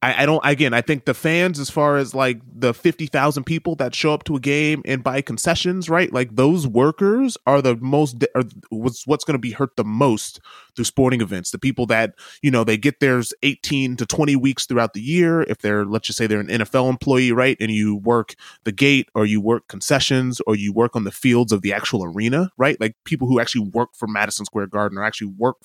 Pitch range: 110-150 Hz